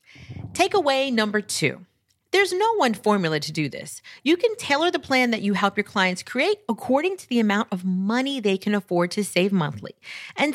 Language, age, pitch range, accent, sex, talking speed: English, 40-59, 190-285 Hz, American, female, 195 wpm